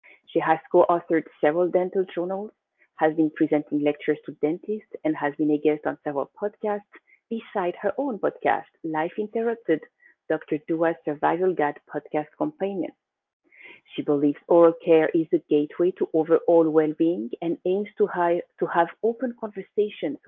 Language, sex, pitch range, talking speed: English, female, 155-210 Hz, 140 wpm